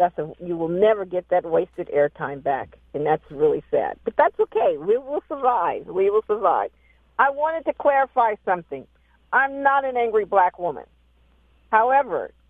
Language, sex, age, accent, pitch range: Japanese, female, 50-69, American, 175-240 Hz